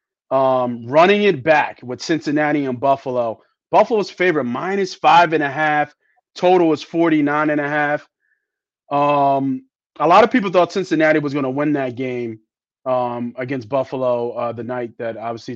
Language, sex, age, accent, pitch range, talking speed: English, male, 30-49, American, 130-160 Hz, 160 wpm